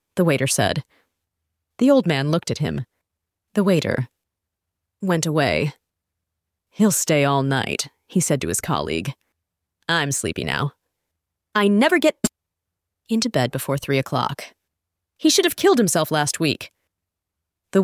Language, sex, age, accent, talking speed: English, female, 30-49, American, 140 wpm